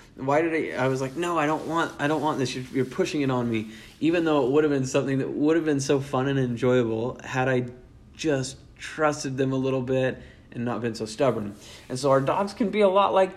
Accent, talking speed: American, 255 wpm